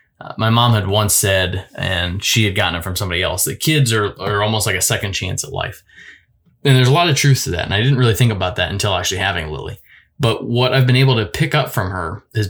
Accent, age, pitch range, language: American, 20-39, 100-125 Hz, English